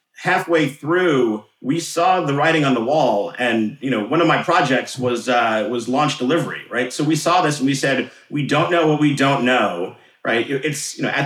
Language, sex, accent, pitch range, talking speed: English, male, American, 125-155 Hz, 220 wpm